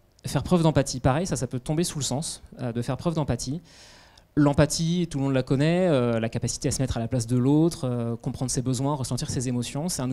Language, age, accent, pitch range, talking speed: French, 20-39, French, 125-155 Hz, 250 wpm